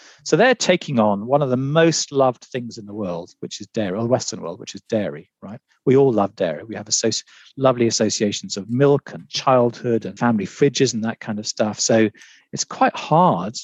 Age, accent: 40-59, British